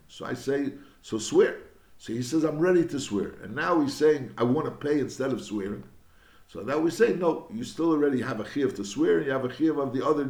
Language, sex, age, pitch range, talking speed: English, male, 60-79, 120-160 Hz, 255 wpm